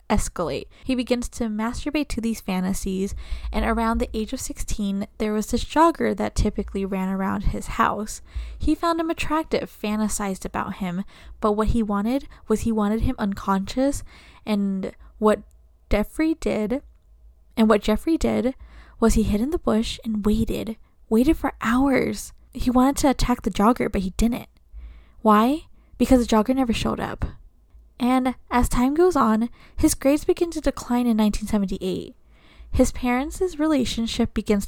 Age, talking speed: 10-29, 155 wpm